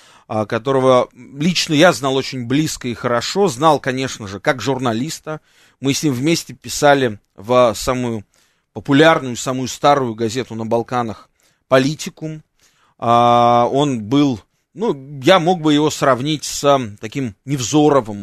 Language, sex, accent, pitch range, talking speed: Russian, male, native, 120-155 Hz, 125 wpm